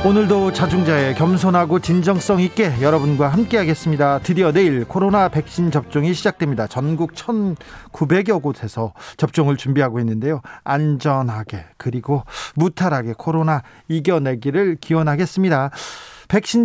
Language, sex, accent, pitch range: Korean, male, native, 140-190 Hz